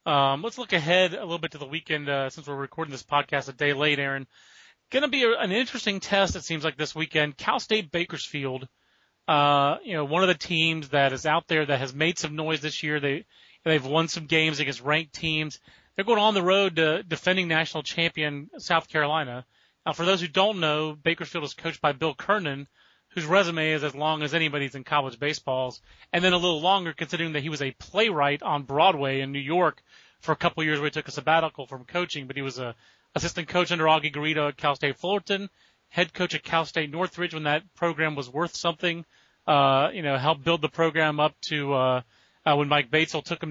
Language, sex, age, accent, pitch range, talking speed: English, male, 30-49, American, 145-170 Hz, 225 wpm